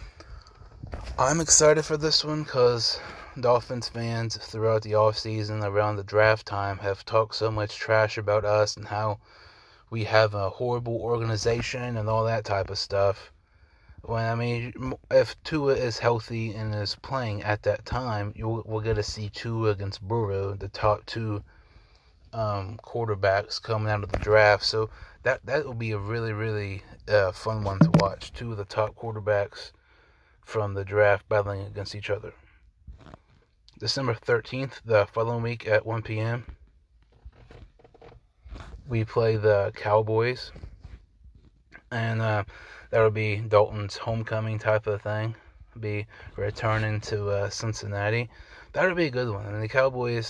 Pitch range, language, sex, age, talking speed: 100-115 Hz, English, male, 20-39, 155 wpm